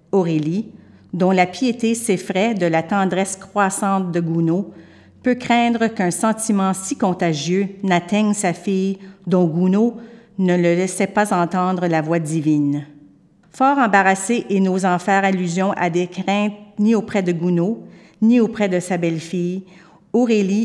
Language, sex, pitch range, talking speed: English, female, 175-205 Hz, 140 wpm